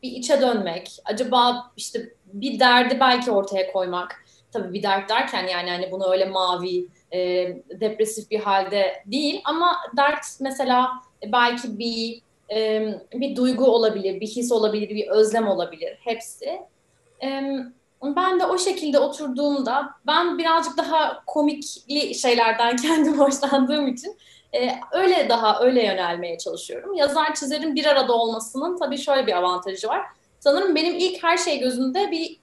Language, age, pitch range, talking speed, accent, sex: Turkish, 30-49, 200-280 Hz, 140 wpm, native, female